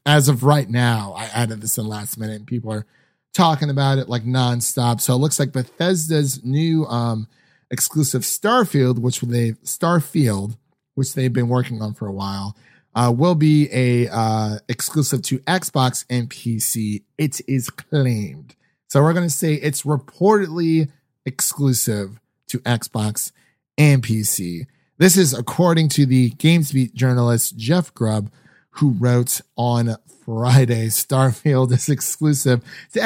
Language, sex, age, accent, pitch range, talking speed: English, male, 30-49, American, 115-145 Hz, 145 wpm